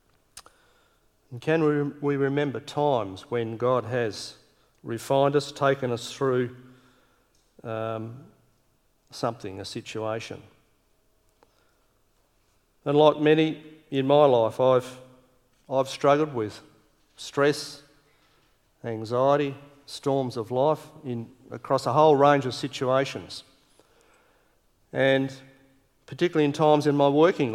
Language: English